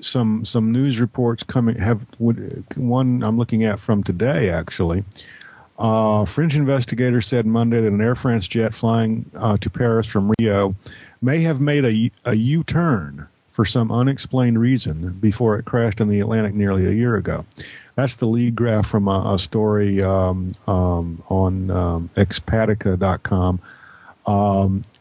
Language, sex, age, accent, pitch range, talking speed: English, male, 50-69, American, 95-115 Hz, 155 wpm